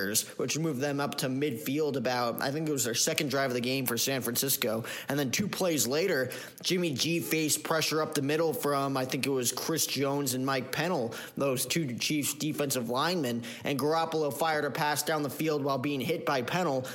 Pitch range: 135-160 Hz